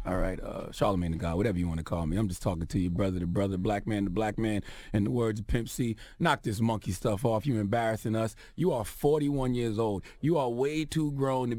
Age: 30-49